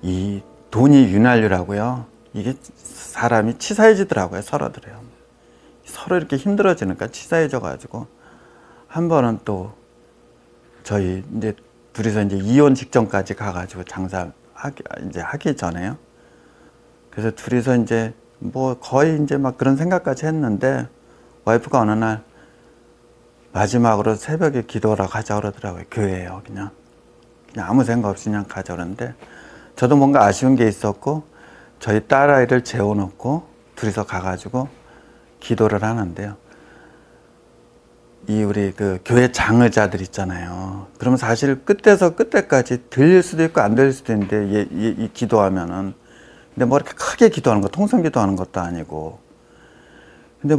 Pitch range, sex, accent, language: 95-130 Hz, male, native, Korean